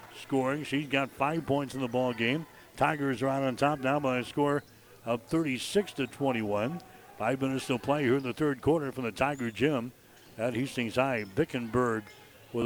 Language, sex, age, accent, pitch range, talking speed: English, male, 60-79, American, 120-140 Hz, 190 wpm